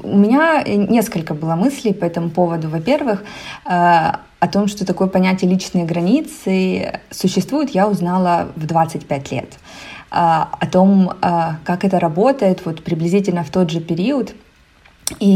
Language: Ukrainian